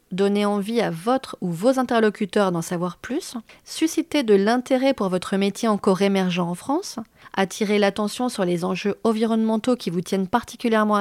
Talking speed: 165 wpm